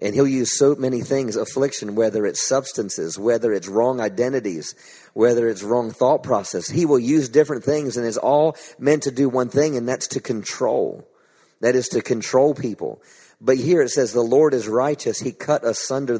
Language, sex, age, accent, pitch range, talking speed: English, male, 40-59, American, 130-165 Hz, 195 wpm